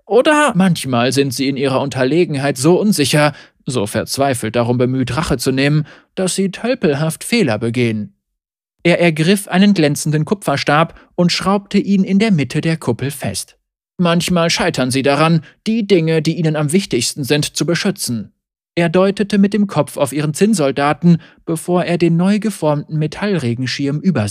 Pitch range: 130-185 Hz